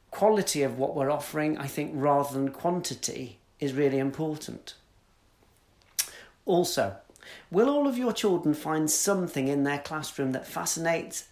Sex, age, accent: male, 40-59, British